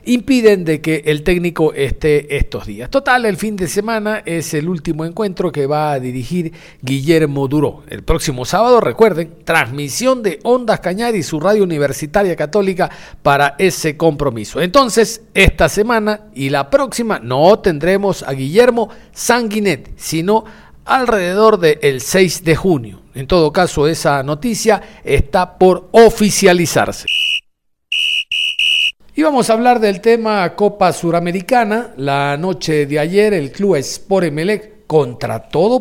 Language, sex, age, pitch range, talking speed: Spanish, male, 50-69, 150-215 Hz, 135 wpm